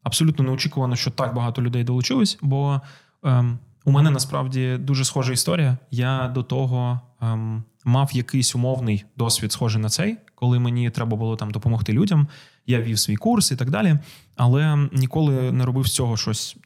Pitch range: 125-150 Hz